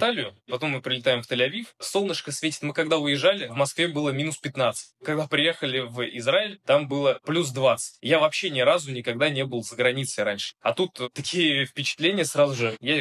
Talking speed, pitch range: 185 wpm, 125-165 Hz